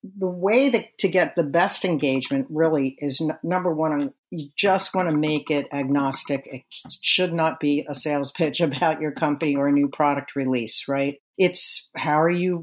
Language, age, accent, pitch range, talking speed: English, 50-69, American, 145-180 Hz, 180 wpm